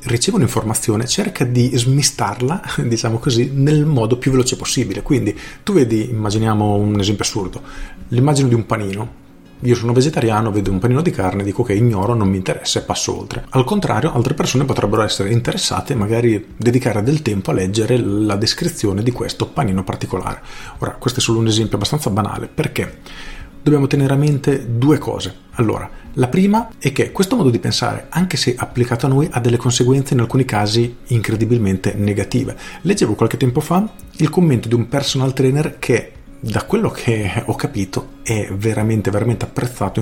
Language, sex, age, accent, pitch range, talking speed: Italian, male, 40-59, native, 105-135 Hz, 175 wpm